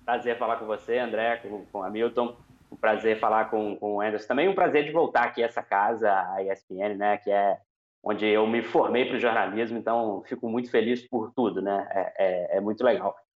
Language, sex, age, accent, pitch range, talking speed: Portuguese, male, 20-39, Brazilian, 115-180 Hz, 220 wpm